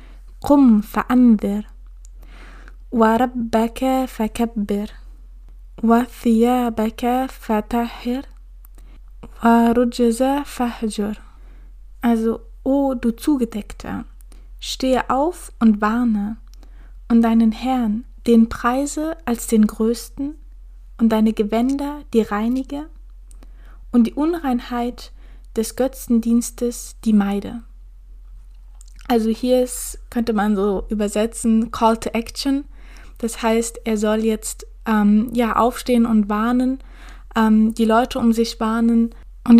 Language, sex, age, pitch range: German, female, 20-39, 220-245 Hz